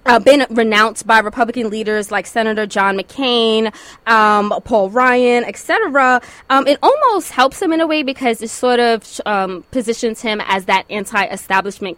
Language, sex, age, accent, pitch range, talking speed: English, female, 20-39, American, 210-265 Hz, 165 wpm